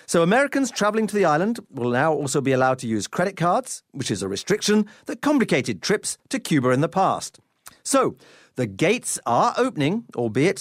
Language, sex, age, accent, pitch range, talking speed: English, male, 40-59, British, 150-240 Hz, 185 wpm